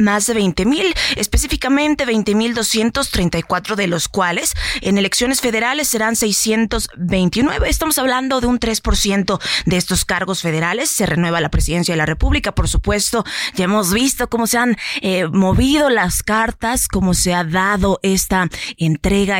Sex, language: female, Spanish